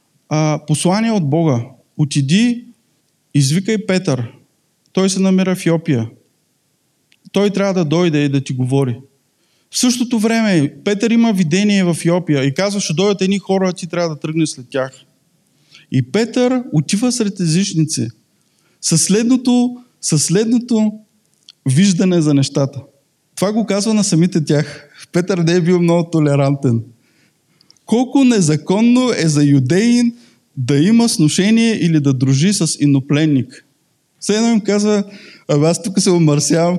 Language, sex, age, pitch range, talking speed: Bulgarian, male, 20-39, 150-215 Hz, 140 wpm